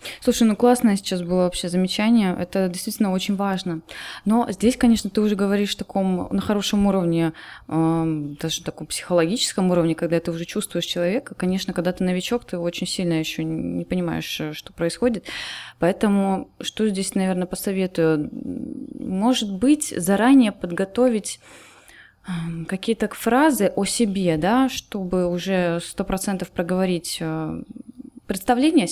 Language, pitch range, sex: Russian, 170-215 Hz, female